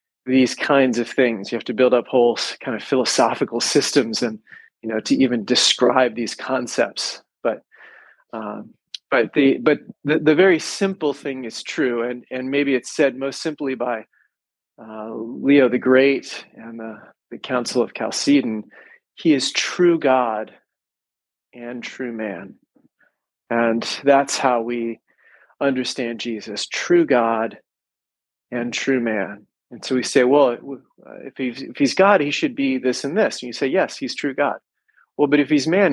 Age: 30-49